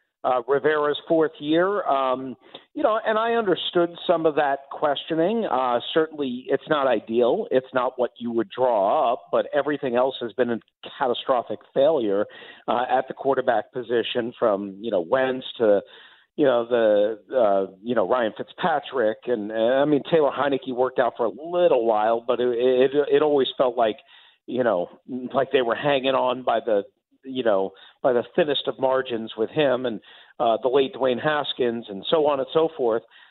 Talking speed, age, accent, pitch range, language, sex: 180 wpm, 50-69, American, 125-175 Hz, English, male